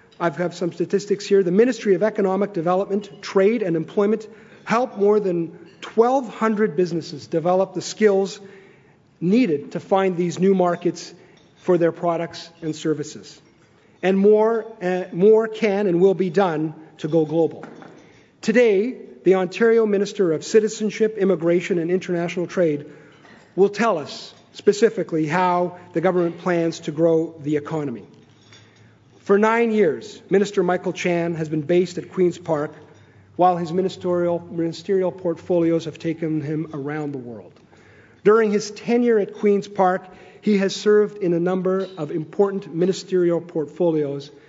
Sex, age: male, 40-59